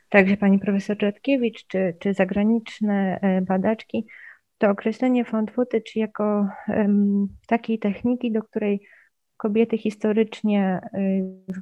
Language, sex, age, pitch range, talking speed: Polish, female, 30-49, 185-220 Hz, 105 wpm